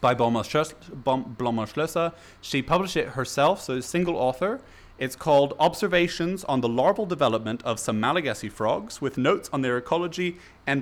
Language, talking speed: English, 145 wpm